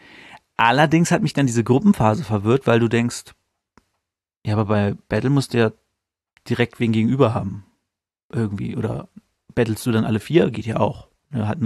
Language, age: German, 40-59